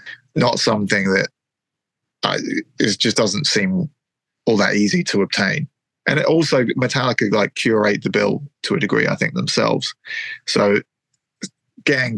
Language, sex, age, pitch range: English, male, 30-49, 105-130 Hz